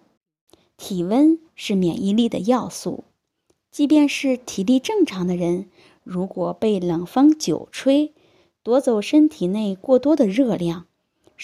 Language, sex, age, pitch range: Chinese, female, 20-39, 180-270 Hz